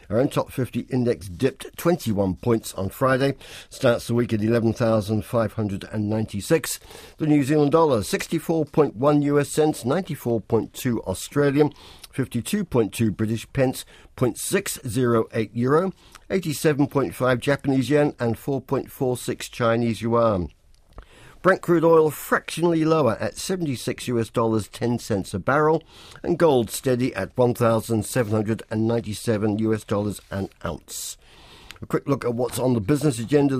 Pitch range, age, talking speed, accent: 110-140 Hz, 50-69, 120 wpm, British